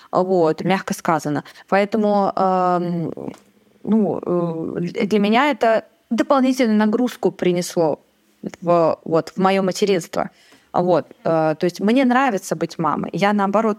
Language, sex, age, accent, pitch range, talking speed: Russian, female, 20-39, native, 180-225 Hz, 120 wpm